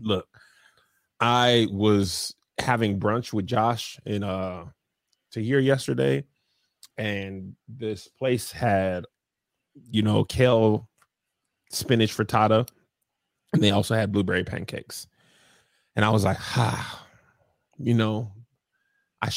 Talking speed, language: 110 wpm, English